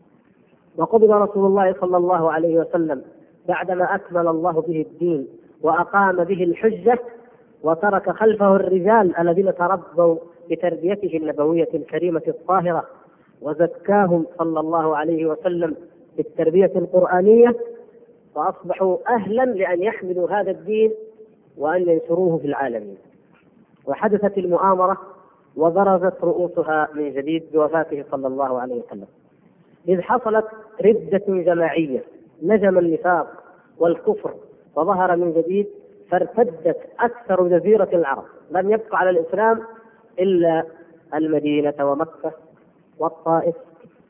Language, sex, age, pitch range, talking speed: Arabic, female, 30-49, 160-200 Hz, 100 wpm